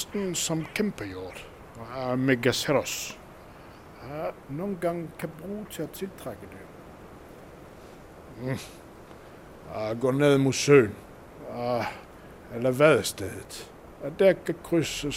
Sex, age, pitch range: male, 60-79, 110-165 Hz